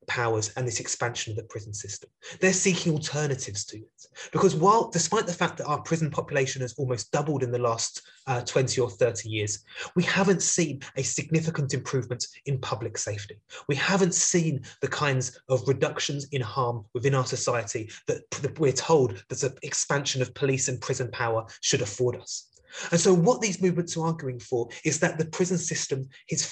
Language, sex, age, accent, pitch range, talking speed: English, male, 20-39, British, 120-160 Hz, 185 wpm